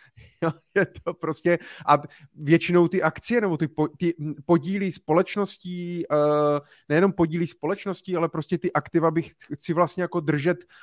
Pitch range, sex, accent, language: 145-170 Hz, male, native, Czech